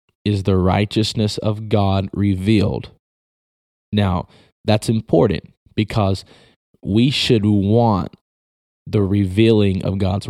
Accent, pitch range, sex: American, 95-110 Hz, male